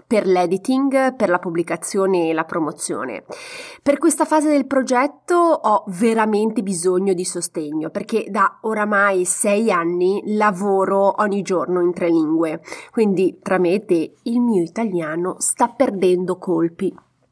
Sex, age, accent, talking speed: female, 30-49, native, 130 wpm